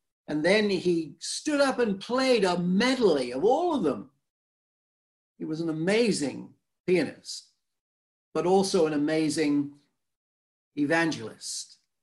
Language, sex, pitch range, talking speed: English, male, 140-190 Hz, 115 wpm